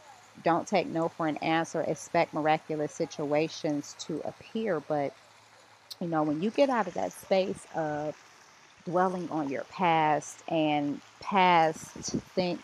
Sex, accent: female, American